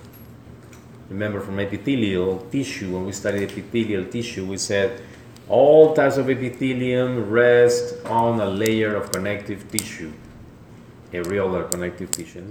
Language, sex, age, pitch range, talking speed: English, male, 40-59, 95-120 Hz, 125 wpm